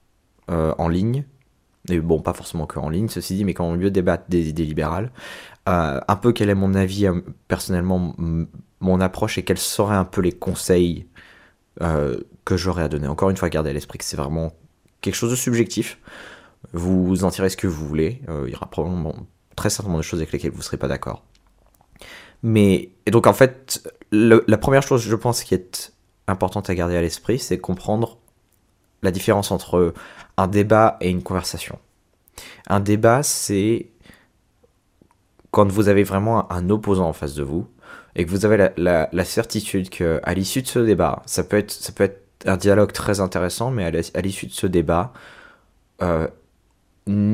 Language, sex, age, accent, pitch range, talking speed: French, male, 20-39, French, 85-105 Hz, 195 wpm